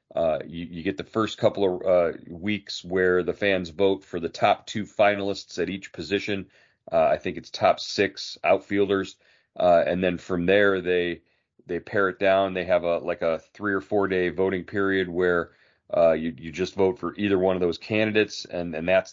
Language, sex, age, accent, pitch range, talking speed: English, male, 40-59, American, 90-105 Hz, 205 wpm